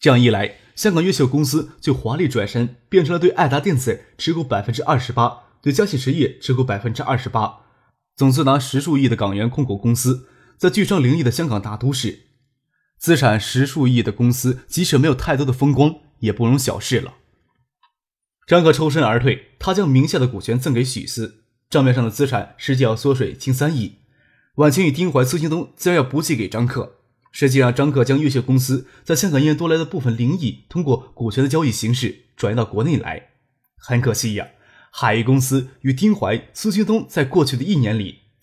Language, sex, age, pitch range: Chinese, male, 20-39, 120-150 Hz